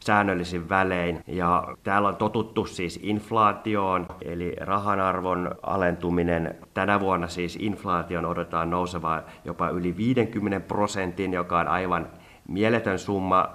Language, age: Finnish, 30-49